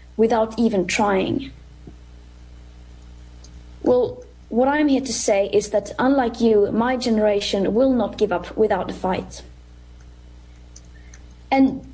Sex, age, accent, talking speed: female, 20-39, Norwegian, 115 wpm